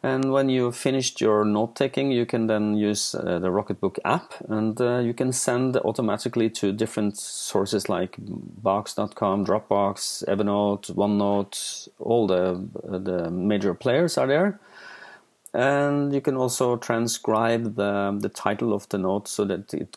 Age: 40-59